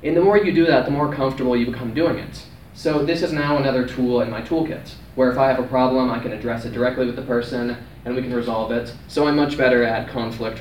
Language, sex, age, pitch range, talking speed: English, male, 20-39, 120-145 Hz, 265 wpm